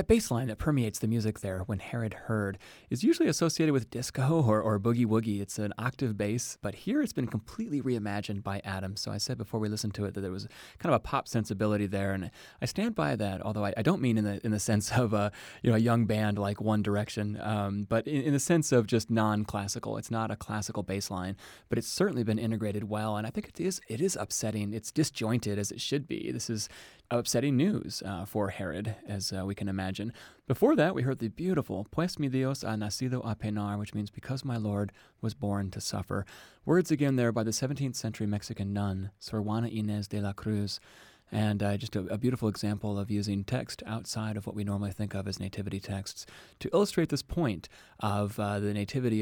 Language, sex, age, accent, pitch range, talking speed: English, male, 30-49, American, 100-120 Hz, 225 wpm